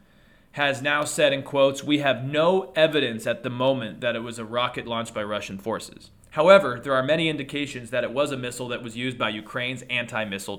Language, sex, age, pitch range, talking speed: English, male, 30-49, 120-145 Hz, 210 wpm